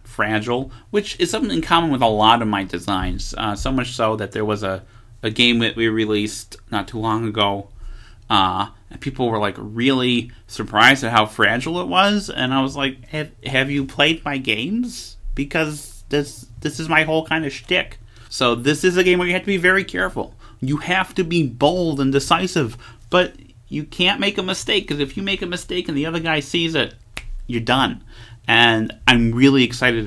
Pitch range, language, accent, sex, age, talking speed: 110-145 Hz, English, American, male, 30-49, 205 wpm